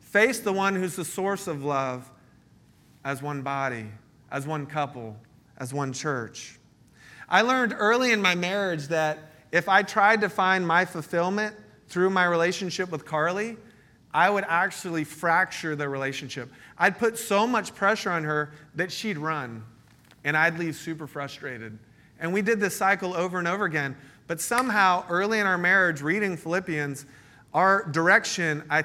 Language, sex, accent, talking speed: English, male, American, 160 wpm